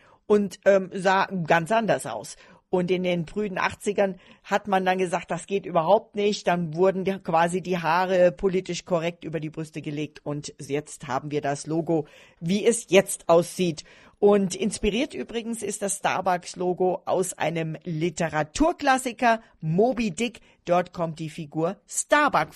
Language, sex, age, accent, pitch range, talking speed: German, female, 40-59, German, 180-225 Hz, 150 wpm